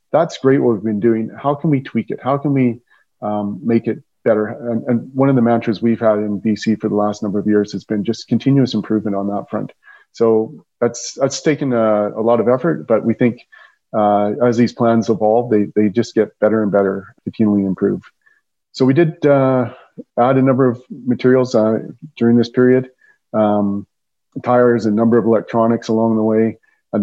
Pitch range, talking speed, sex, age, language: 110-125 Hz, 200 wpm, male, 40-59, English